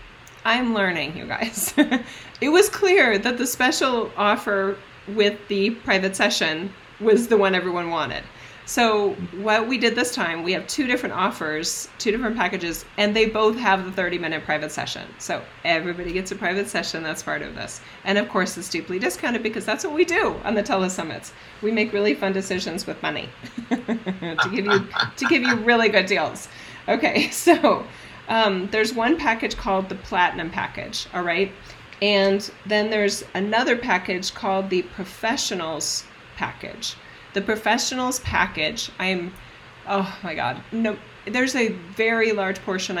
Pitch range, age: 180-225 Hz, 30-49